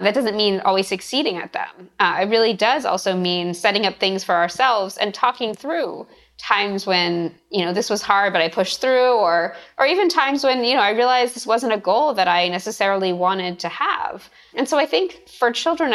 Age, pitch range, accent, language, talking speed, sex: 20-39, 180-225 Hz, American, English, 215 wpm, female